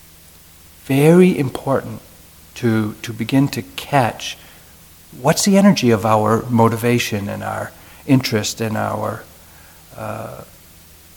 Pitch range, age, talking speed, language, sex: 80-120 Hz, 60-79, 100 wpm, English, male